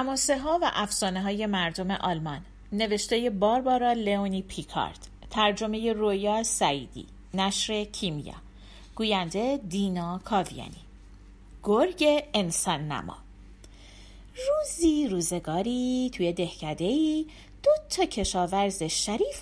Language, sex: Persian, female